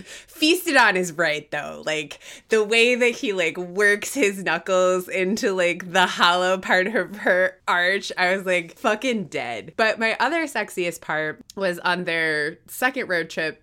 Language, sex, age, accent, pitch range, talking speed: English, female, 20-39, American, 150-185 Hz, 165 wpm